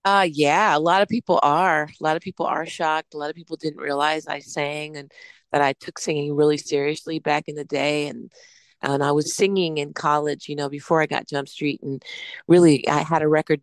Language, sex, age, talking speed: English, female, 40-59, 230 wpm